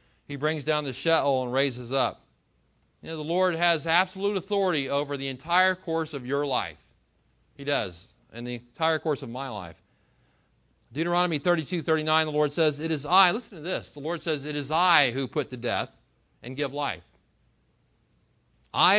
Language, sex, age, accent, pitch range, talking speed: English, male, 40-59, American, 130-165 Hz, 180 wpm